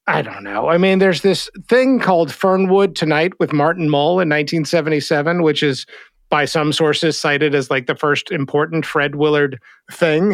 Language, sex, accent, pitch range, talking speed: English, male, American, 150-215 Hz, 175 wpm